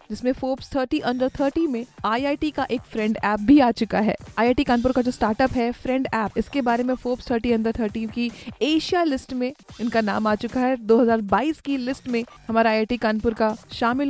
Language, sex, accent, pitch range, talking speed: Hindi, female, native, 225-260 Hz, 205 wpm